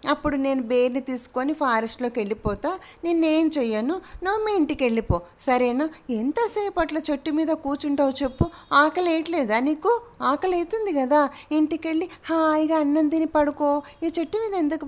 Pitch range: 250-320 Hz